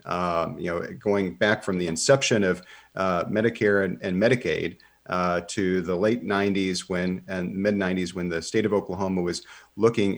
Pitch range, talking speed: 90-115 Hz, 175 wpm